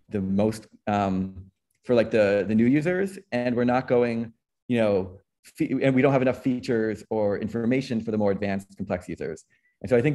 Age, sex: 30-49, male